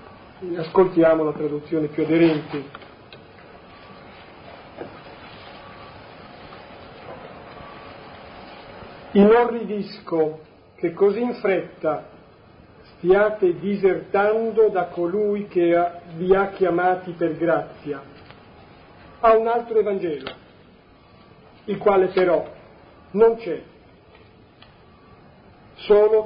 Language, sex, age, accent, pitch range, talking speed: Italian, male, 40-59, native, 165-210 Hz, 75 wpm